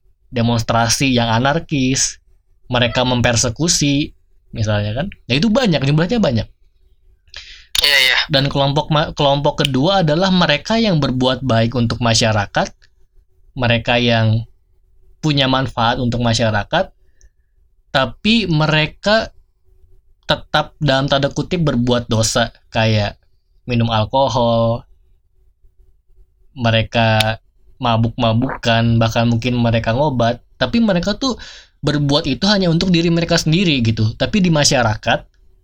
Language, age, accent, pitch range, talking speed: Indonesian, 20-39, native, 110-145 Hz, 105 wpm